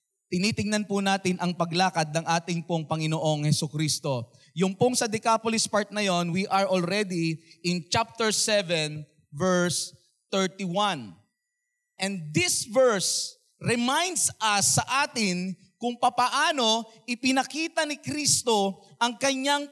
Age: 30-49